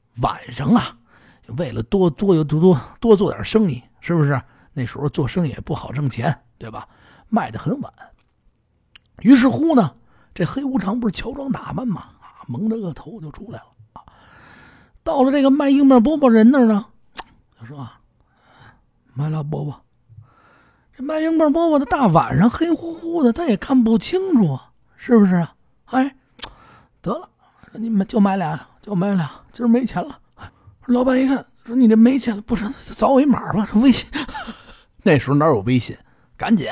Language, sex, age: Chinese, male, 50-69